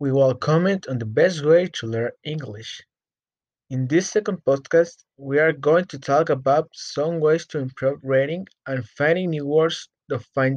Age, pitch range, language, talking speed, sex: 20-39, 135-175 Hz, English, 175 wpm, male